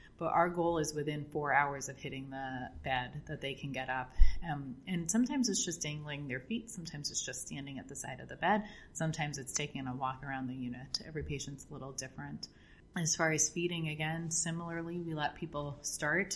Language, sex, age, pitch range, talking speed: English, female, 30-49, 145-180 Hz, 210 wpm